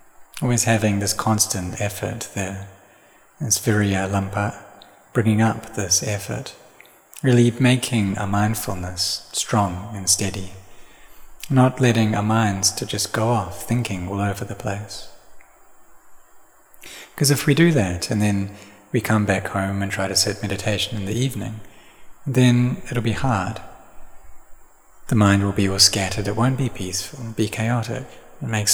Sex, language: male, English